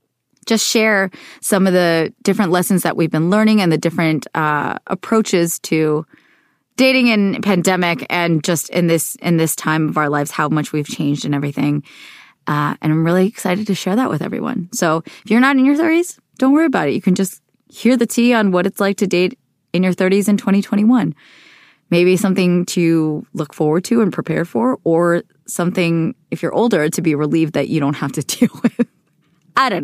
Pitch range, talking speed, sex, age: 155-195 Hz, 200 wpm, female, 20-39